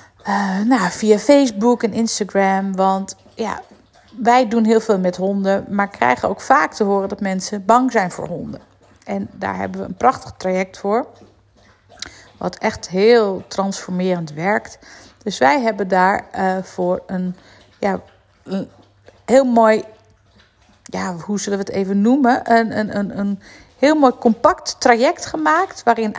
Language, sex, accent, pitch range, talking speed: Dutch, female, Dutch, 195-240 Hz, 145 wpm